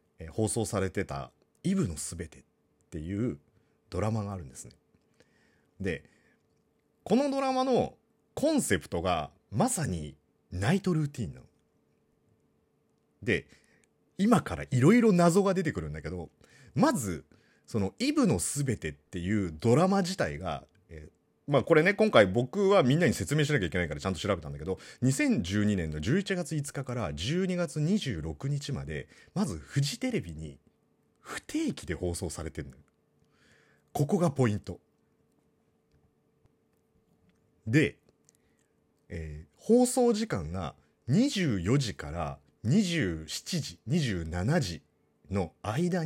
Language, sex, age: Japanese, male, 40-59